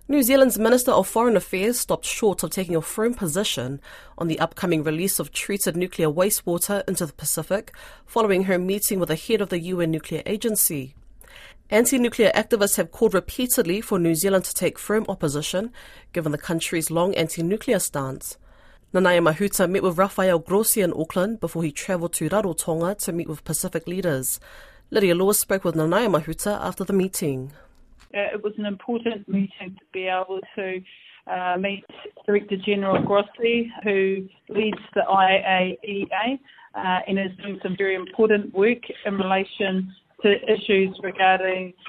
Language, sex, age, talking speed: English, female, 30-49, 160 wpm